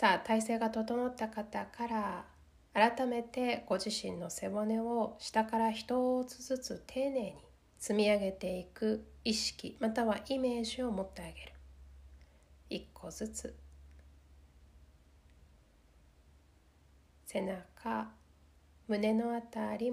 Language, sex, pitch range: Japanese, female, 155-235 Hz